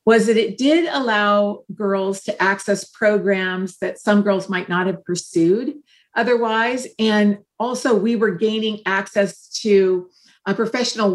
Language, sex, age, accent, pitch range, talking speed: English, female, 50-69, American, 195-225 Hz, 135 wpm